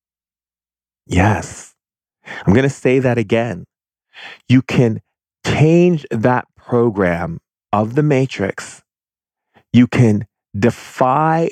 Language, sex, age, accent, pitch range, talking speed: English, male, 30-49, American, 95-120 Hz, 95 wpm